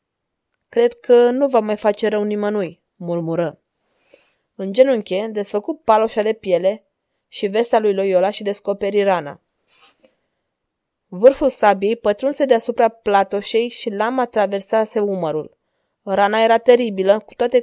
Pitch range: 185-225 Hz